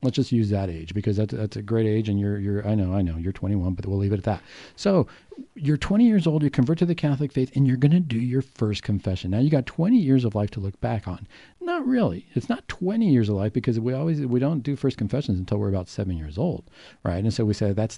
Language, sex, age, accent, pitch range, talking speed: English, male, 50-69, American, 100-130 Hz, 280 wpm